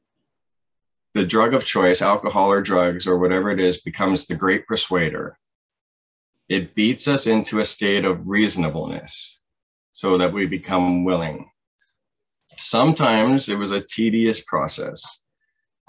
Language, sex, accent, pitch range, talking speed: English, male, American, 90-105 Hz, 130 wpm